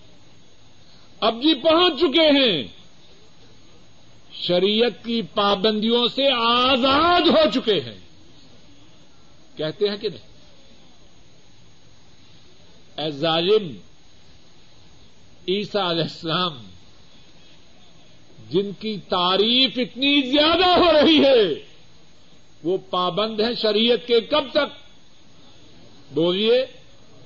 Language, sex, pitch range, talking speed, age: Urdu, male, 185-310 Hz, 80 wpm, 50-69